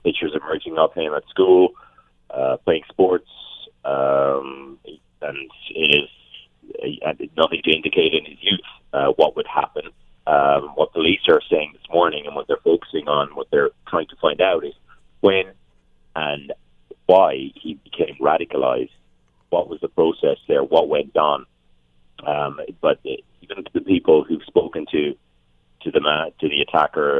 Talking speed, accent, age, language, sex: 150 wpm, American, 40-59, English, male